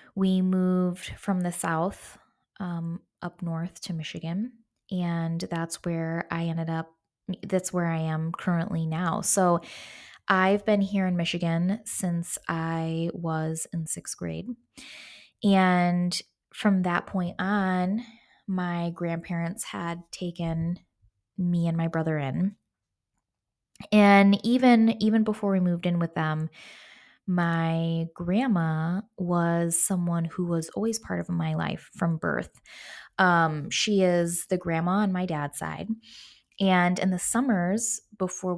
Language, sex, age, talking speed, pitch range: English, female, 20-39, 130 wpm, 165-195 Hz